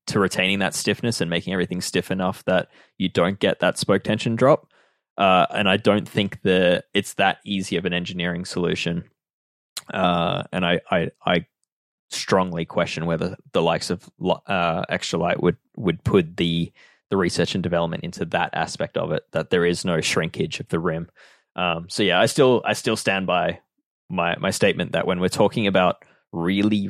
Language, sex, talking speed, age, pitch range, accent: English, male, 185 wpm, 20-39, 85-100 Hz, Australian